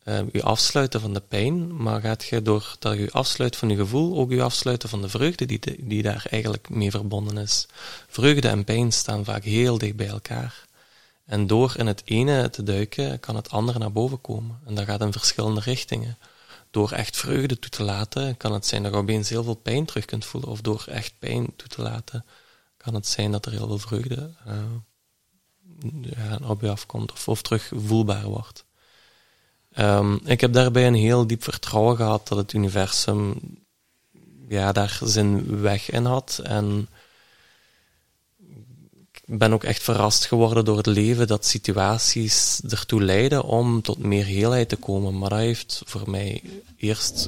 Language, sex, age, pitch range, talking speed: Dutch, male, 20-39, 105-120 Hz, 180 wpm